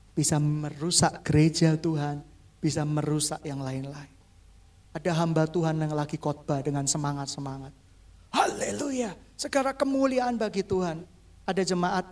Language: Indonesian